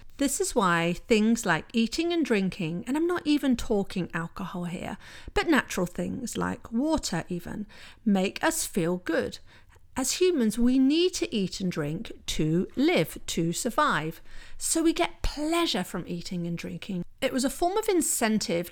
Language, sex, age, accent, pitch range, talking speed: English, female, 40-59, British, 190-280 Hz, 165 wpm